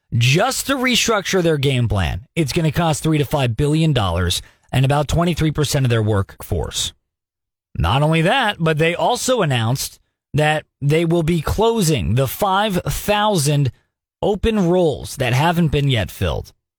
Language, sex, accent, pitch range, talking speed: English, male, American, 125-175 Hz, 145 wpm